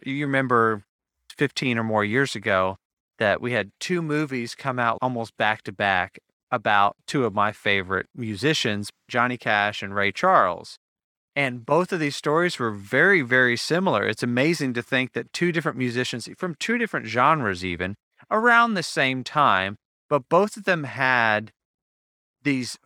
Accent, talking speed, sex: American, 160 wpm, male